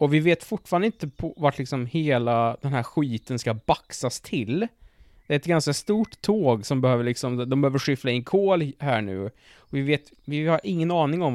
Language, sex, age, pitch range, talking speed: English, male, 20-39, 125-170 Hz, 200 wpm